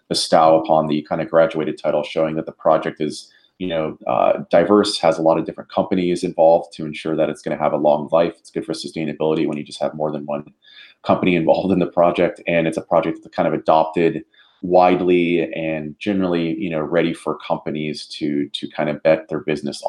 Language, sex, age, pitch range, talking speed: English, male, 30-49, 80-90 Hz, 215 wpm